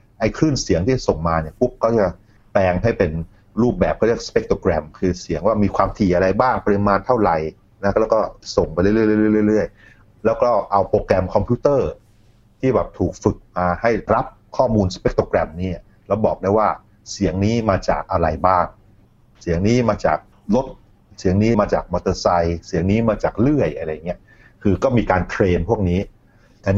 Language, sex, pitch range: Thai, male, 90-110 Hz